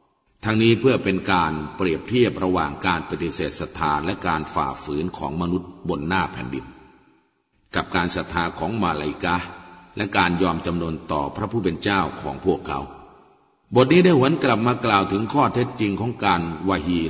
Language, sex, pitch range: Thai, male, 85-110 Hz